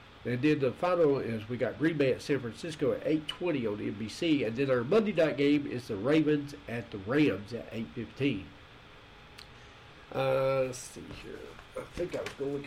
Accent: American